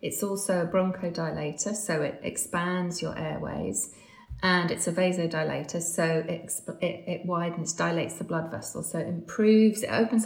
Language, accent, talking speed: English, British, 150 wpm